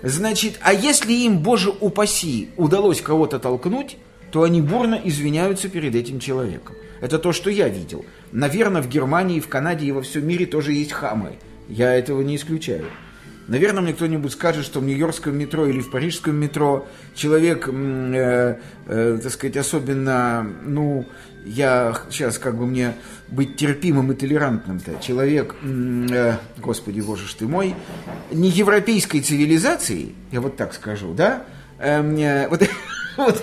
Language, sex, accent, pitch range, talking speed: Russian, male, native, 135-185 Hz, 140 wpm